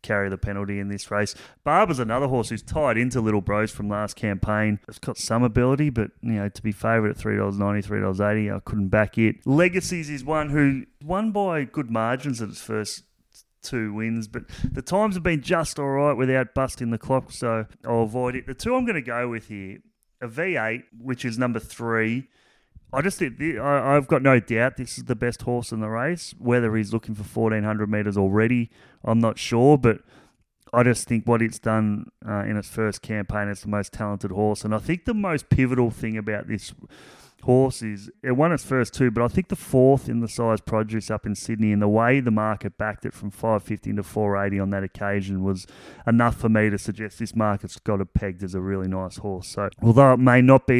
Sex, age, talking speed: male, 30-49, 215 wpm